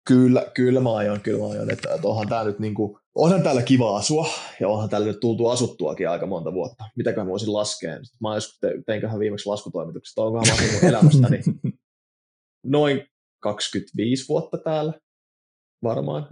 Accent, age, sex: native, 20-39, male